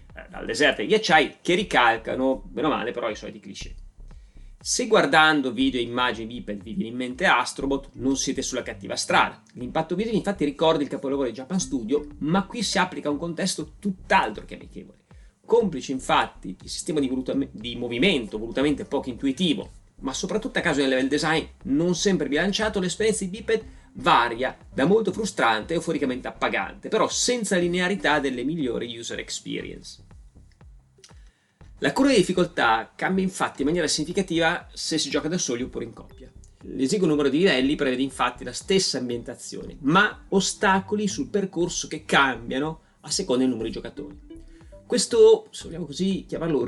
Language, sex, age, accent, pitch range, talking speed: Italian, male, 30-49, native, 130-190 Hz, 165 wpm